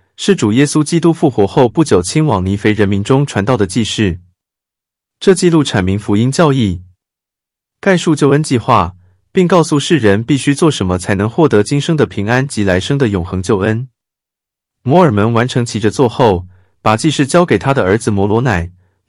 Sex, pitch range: male, 95-145 Hz